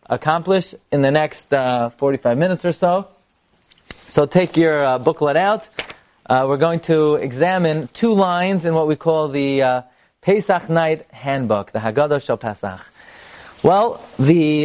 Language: English